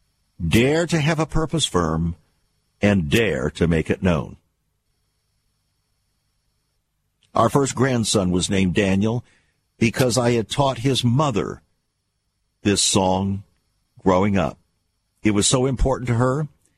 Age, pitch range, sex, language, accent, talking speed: 60-79, 95-125 Hz, male, English, American, 120 wpm